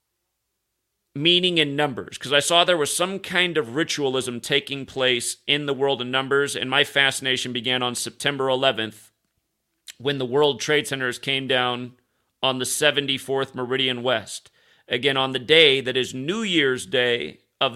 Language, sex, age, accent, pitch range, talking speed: English, male, 40-59, American, 130-150 Hz, 160 wpm